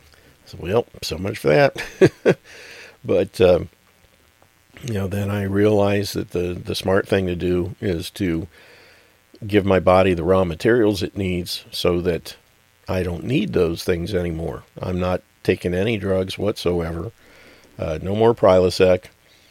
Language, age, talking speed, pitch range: English, 50-69, 145 wpm, 85-100 Hz